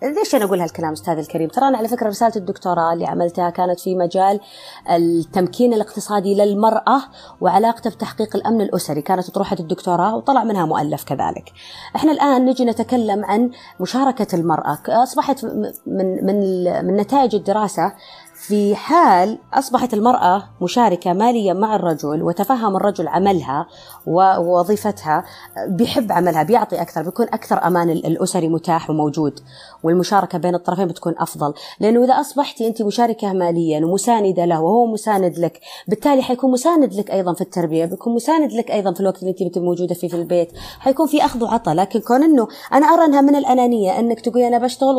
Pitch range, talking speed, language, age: 175-240 Hz, 155 wpm, Arabic, 30-49